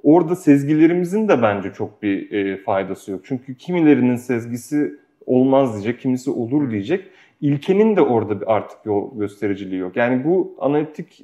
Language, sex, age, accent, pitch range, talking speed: Turkish, male, 30-49, native, 110-145 Hz, 140 wpm